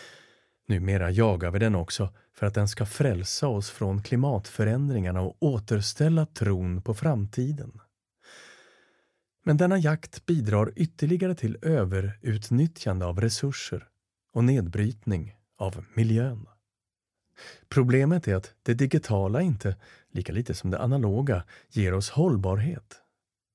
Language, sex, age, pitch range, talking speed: Swedish, male, 40-59, 100-130 Hz, 115 wpm